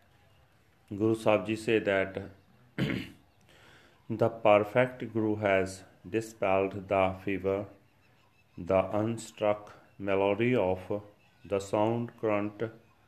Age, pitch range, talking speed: 40-59, 100-115 Hz, 85 wpm